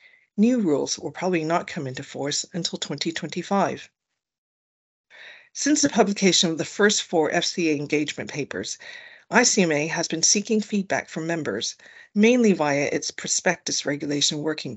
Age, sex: 40-59, female